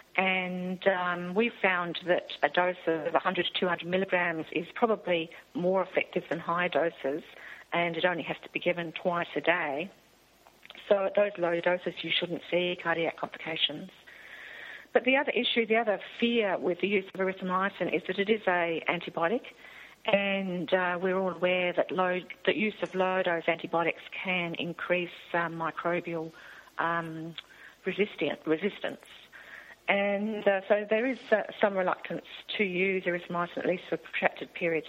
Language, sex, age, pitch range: English, female, 50-69, 170-195 Hz